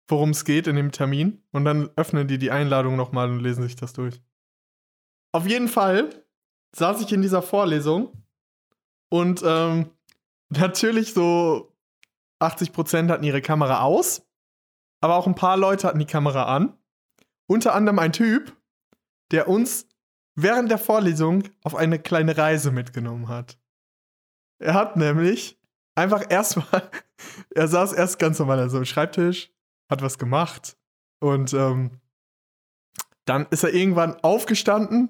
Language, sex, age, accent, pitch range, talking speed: German, male, 20-39, German, 140-190 Hz, 140 wpm